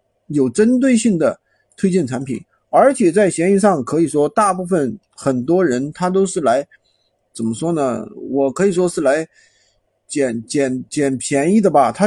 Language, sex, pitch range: Chinese, male, 135-185 Hz